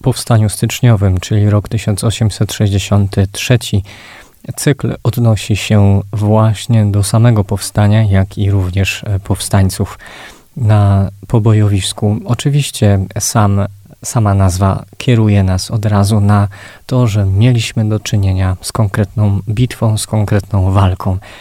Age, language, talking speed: 20-39, Polish, 105 wpm